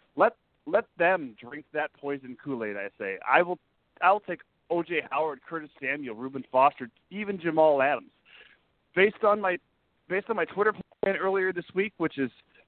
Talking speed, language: 175 wpm, English